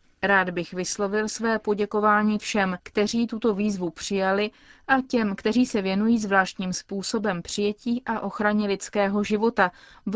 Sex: female